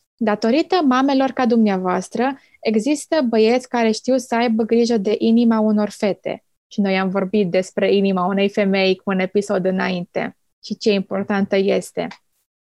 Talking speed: 145 wpm